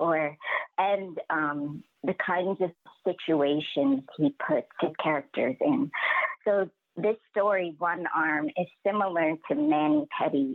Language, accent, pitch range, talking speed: English, American, 150-220 Hz, 125 wpm